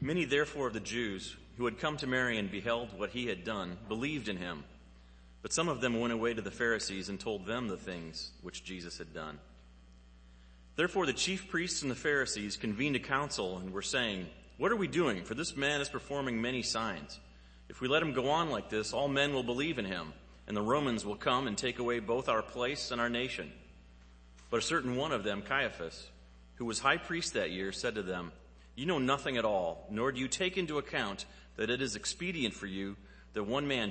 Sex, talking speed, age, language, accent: male, 220 wpm, 30-49, English, American